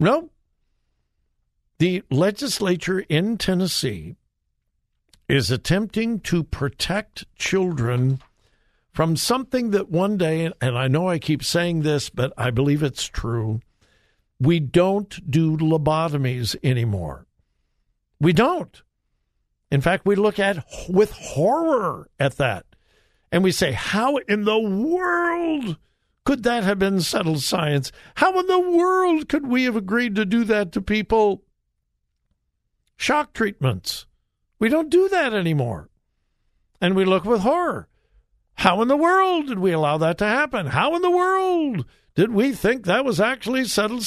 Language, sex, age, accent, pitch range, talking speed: English, male, 60-79, American, 140-230 Hz, 140 wpm